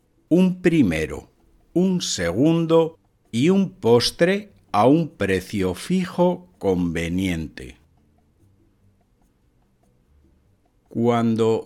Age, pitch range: 60-79, 90-150 Hz